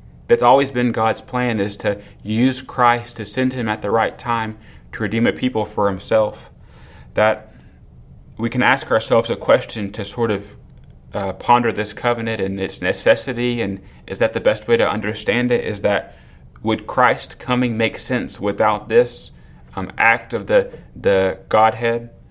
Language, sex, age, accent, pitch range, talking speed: English, male, 30-49, American, 105-120 Hz, 170 wpm